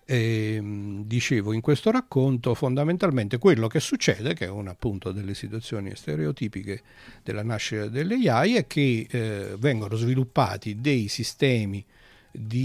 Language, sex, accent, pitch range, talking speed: Italian, male, native, 110-135 Hz, 135 wpm